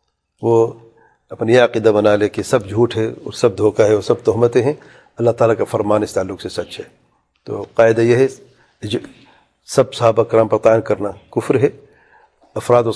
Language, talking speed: English, 165 wpm